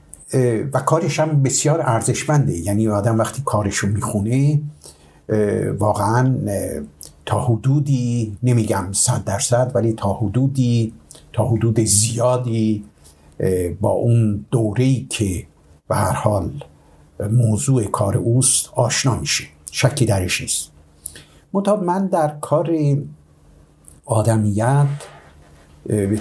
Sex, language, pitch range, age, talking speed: male, Persian, 100-130 Hz, 60-79, 90 wpm